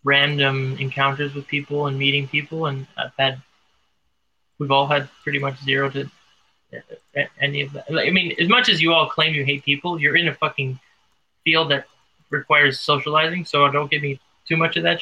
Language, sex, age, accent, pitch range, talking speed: English, male, 20-39, American, 135-165 Hz, 195 wpm